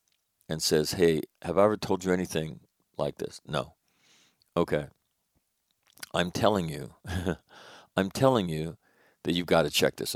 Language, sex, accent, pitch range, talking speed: English, male, American, 80-100 Hz, 150 wpm